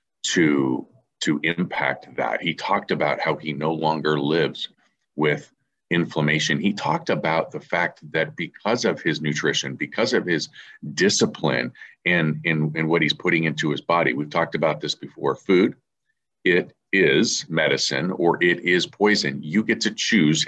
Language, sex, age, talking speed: English, male, 40-59, 160 wpm